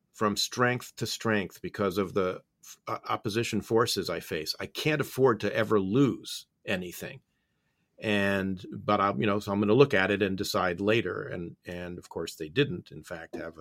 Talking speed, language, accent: 185 wpm, English, American